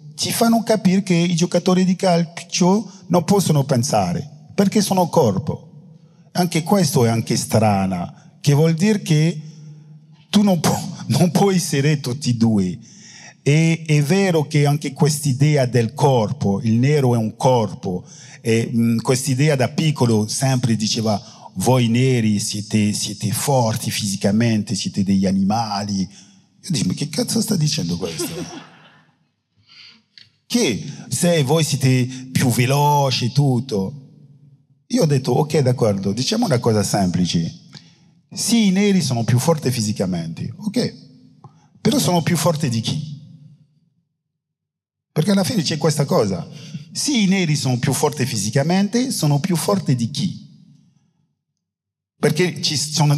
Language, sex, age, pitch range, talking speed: Italian, male, 50-69, 125-175 Hz, 135 wpm